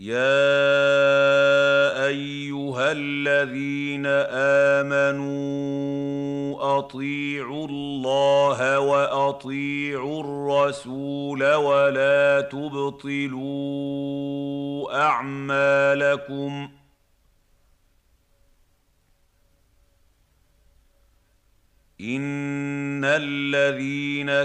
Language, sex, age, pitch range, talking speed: Arabic, male, 50-69, 130-140 Hz, 30 wpm